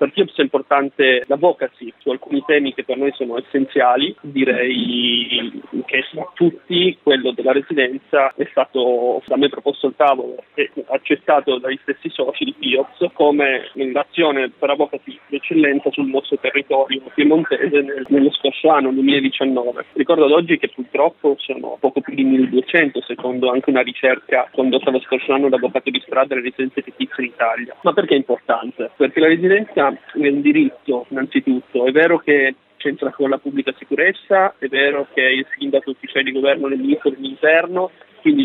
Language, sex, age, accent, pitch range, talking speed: Italian, male, 30-49, native, 135-155 Hz, 165 wpm